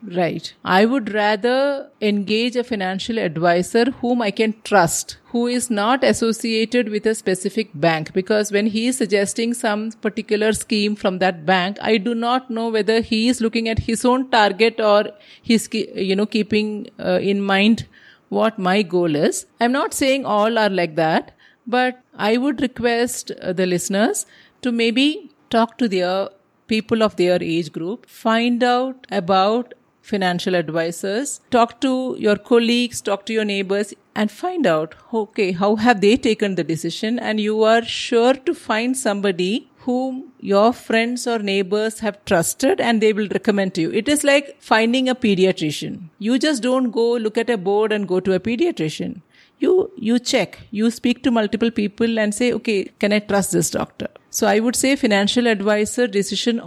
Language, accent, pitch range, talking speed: English, Indian, 200-240 Hz, 175 wpm